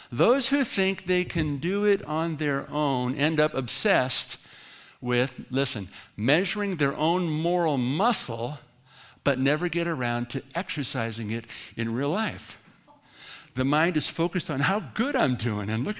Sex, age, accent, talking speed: male, 60-79, American, 155 wpm